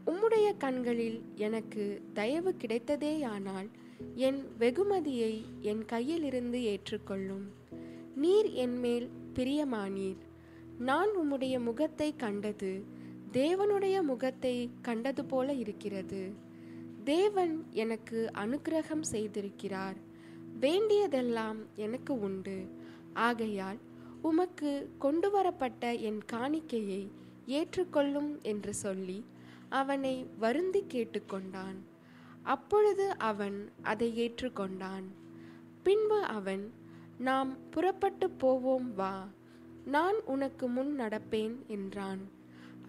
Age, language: 20-39, Tamil